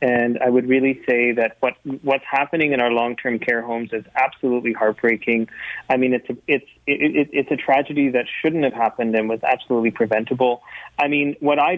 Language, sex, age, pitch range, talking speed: English, male, 30-49, 115-140 Hz, 200 wpm